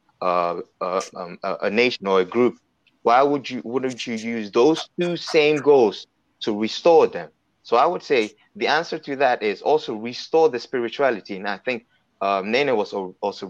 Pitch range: 100-135 Hz